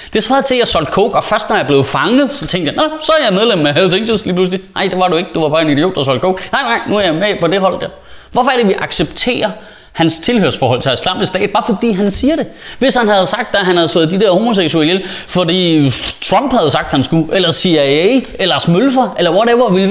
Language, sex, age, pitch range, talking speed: Danish, male, 30-49, 145-220 Hz, 265 wpm